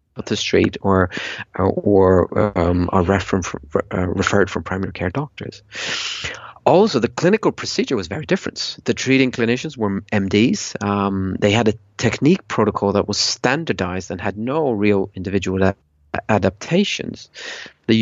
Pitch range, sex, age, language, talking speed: 95-115 Hz, male, 30-49, English, 135 wpm